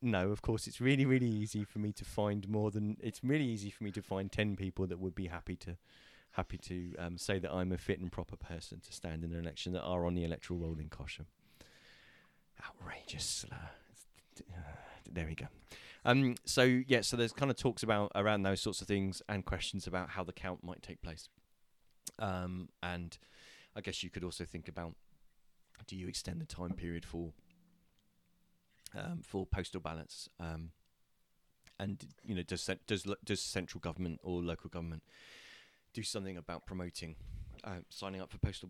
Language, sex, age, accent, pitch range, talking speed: English, male, 30-49, British, 90-105 Hz, 185 wpm